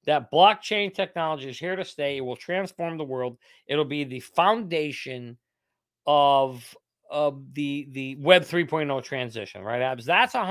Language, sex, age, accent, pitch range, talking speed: English, male, 50-69, American, 130-180 Hz, 150 wpm